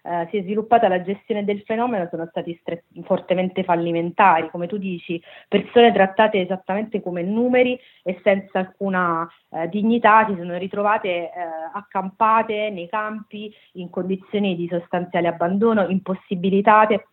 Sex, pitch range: female, 170-200 Hz